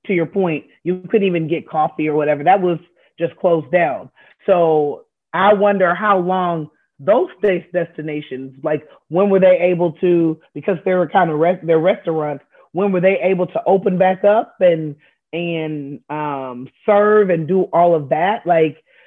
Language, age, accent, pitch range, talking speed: English, 30-49, American, 160-195 Hz, 175 wpm